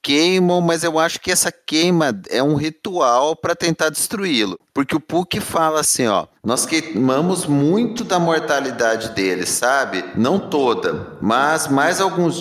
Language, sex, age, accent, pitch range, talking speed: Portuguese, male, 30-49, Brazilian, 130-170 Hz, 150 wpm